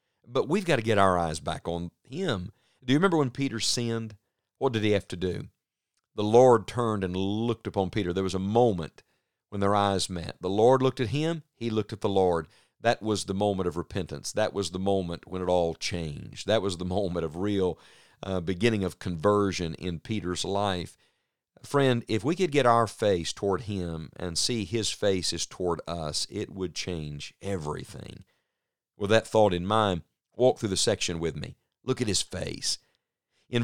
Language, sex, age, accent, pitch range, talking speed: English, male, 50-69, American, 90-115 Hz, 195 wpm